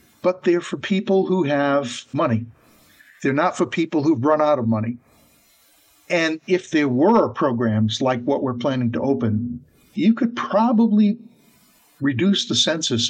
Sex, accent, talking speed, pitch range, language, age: male, American, 150 wpm, 120-170 Hz, English, 50-69